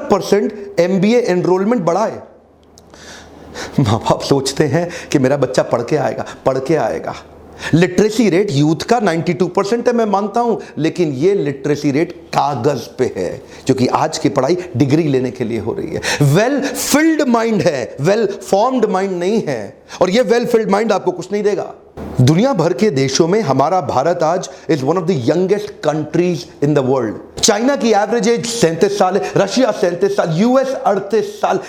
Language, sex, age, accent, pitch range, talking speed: Hindi, male, 40-59, native, 160-230 Hz, 165 wpm